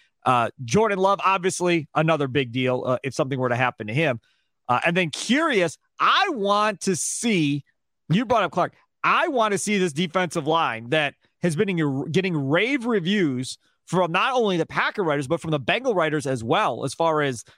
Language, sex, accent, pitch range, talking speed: English, male, American, 145-200 Hz, 195 wpm